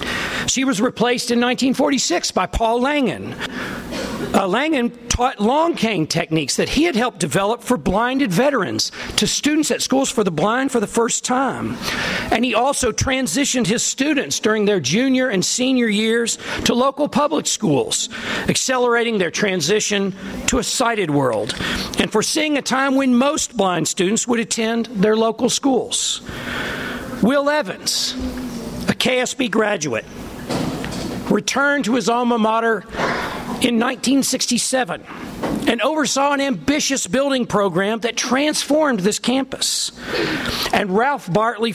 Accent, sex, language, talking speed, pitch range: American, male, English, 135 wpm, 205-260 Hz